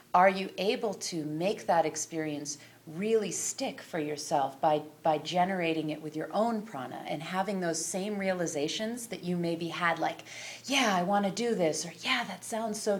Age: 30-49